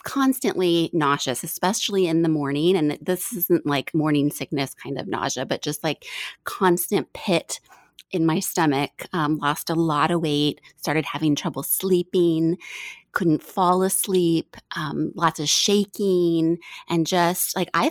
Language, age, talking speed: English, 30-49, 145 wpm